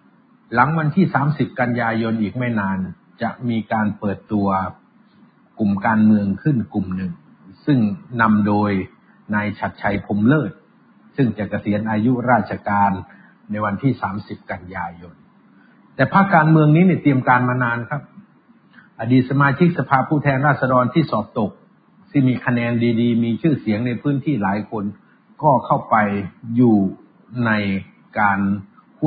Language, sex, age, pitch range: Thai, male, 60-79, 105-150 Hz